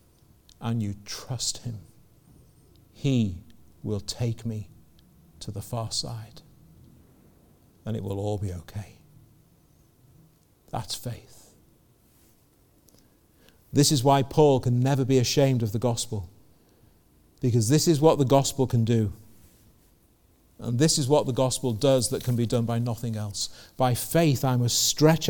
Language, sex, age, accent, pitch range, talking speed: English, male, 50-69, British, 110-130 Hz, 140 wpm